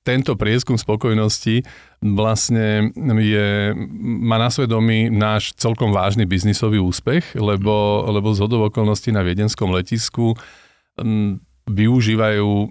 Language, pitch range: Slovak, 90-110 Hz